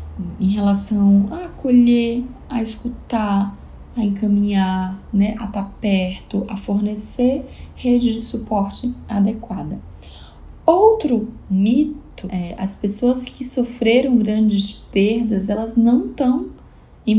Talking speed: 110 wpm